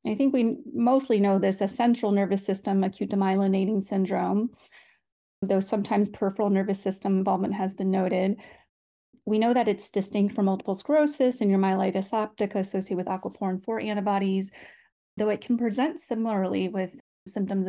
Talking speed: 155 wpm